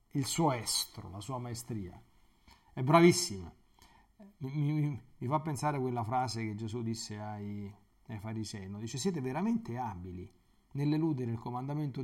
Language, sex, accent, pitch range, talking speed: Italian, male, native, 120-160 Hz, 150 wpm